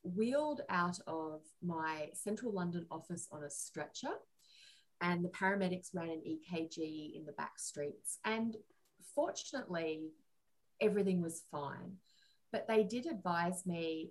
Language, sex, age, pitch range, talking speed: English, female, 30-49, 160-215 Hz, 130 wpm